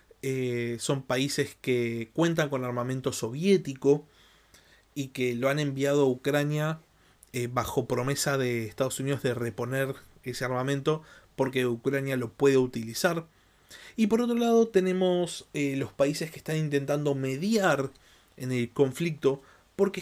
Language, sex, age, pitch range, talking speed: Spanish, male, 20-39, 130-175 Hz, 140 wpm